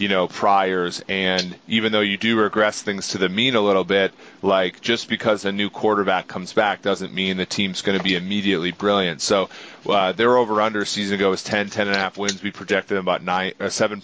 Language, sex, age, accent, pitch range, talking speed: English, male, 30-49, American, 95-105 Hz, 225 wpm